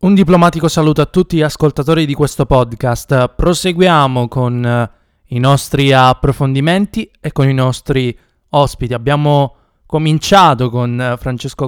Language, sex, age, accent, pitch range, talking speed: Italian, male, 20-39, native, 125-155 Hz, 125 wpm